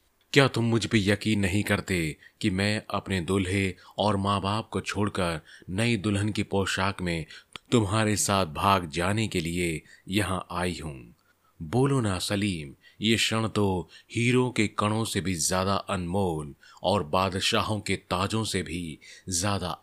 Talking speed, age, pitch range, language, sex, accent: 150 wpm, 30-49, 95-115 Hz, Hindi, male, native